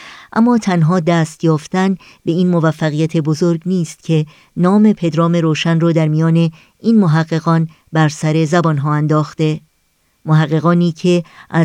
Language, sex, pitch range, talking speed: Persian, male, 160-175 Hz, 135 wpm